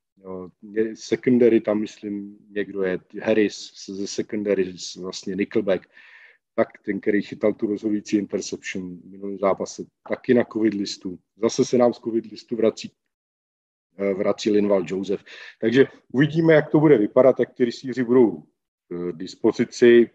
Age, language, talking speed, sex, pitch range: 50-69, Slovak, 125 wpm, male, 100-125 Hz